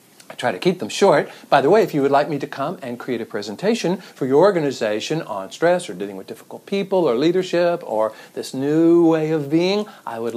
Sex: male